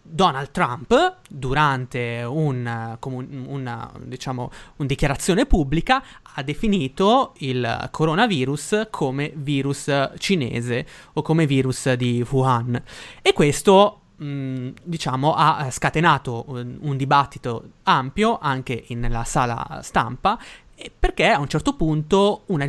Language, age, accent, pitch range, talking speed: Italian, 20-39, native, 135-190 Hz, 115 wpm